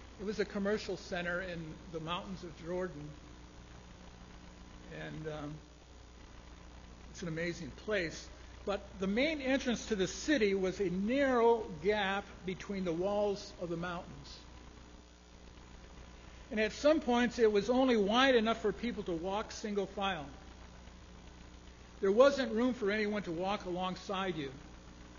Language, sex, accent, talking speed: English, male, American, 135 wpm